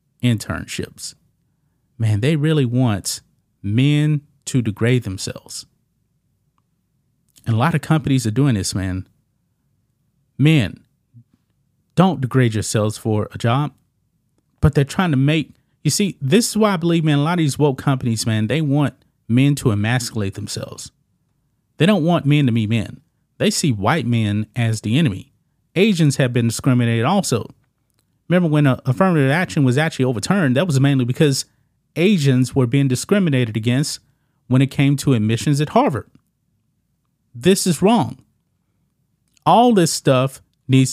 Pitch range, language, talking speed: 120-155 Hz, English, 145 wpm